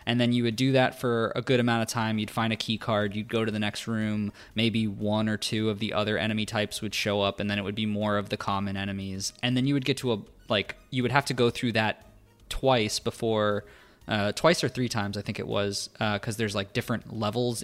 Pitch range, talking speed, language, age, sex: 105-125 Hz, 260 wpm, English, 20-39, male